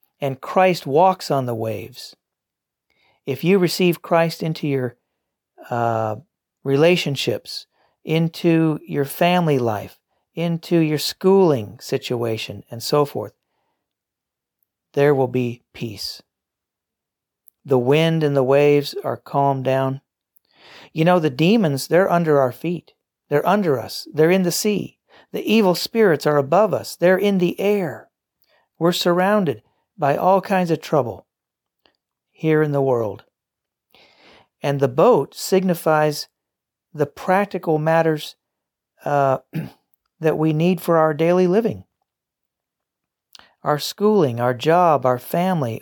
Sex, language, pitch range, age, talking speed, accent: male, English, 135-175 Hz, 50-69, 125 wpm, American